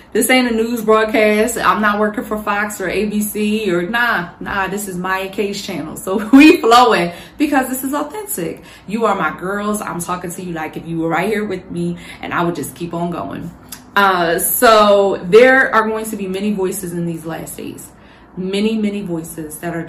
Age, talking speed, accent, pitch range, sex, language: 20-39, 205 wpm, American, 170-205 Hz, female, English